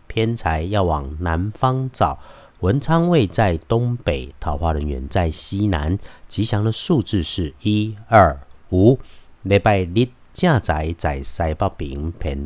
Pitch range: 85-120 Hz